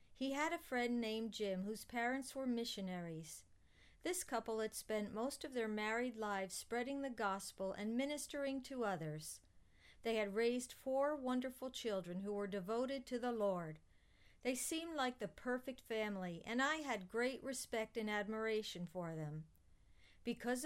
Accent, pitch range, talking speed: American, 195-255 Hz, 155 wpm